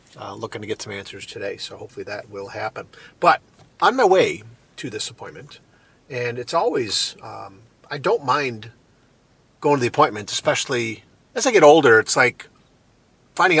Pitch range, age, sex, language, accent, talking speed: 115-145 Hz, 40-59, male, English, American, 170 wpm